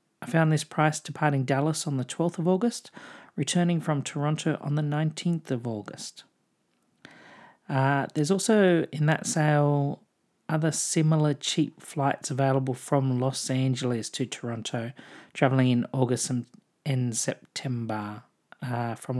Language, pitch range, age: English, 135-185 Hz, 40-59